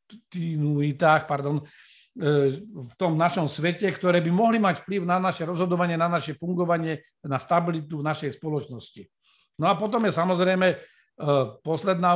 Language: Slovak